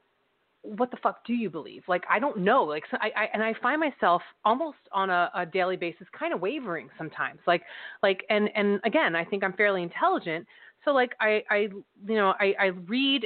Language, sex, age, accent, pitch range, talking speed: English, female, 30-49, American, 175-215 Hz, 215 wpm